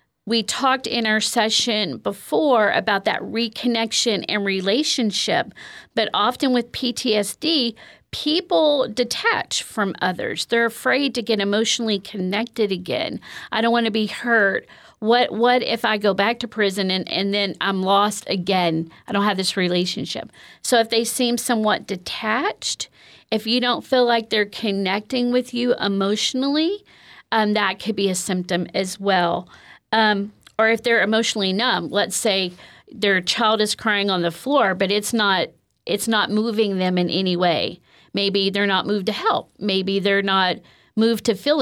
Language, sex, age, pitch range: English, female, 40-59, 195-235 Hz